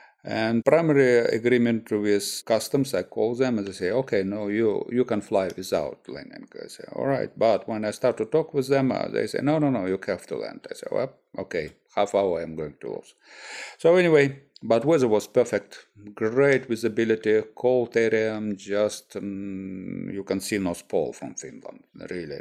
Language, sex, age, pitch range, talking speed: English, male, 50-69, 100-130 Hz, 185 wpm